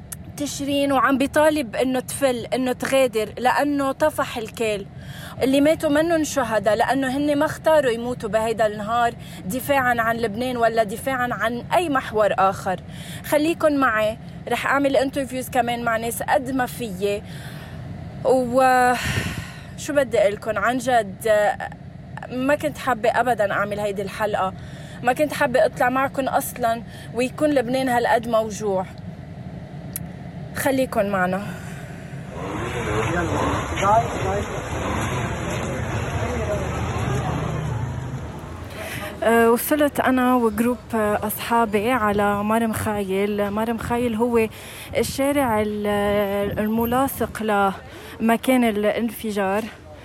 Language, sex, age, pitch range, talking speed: Arabic, female, 20-39, 205-255 Hz, 95 wpm